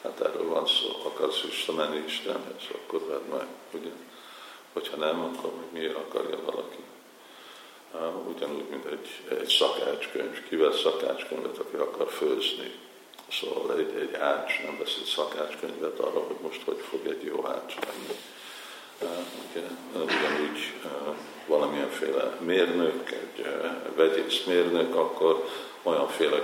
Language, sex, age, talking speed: Hungarian, male, 50-69, 130 wpm